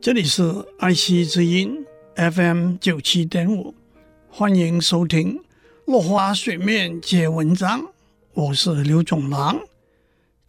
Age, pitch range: 60-79, 170-255 Hz